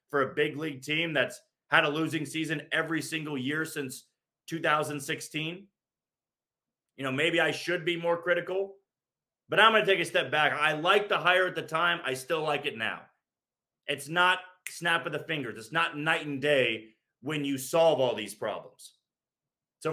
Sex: male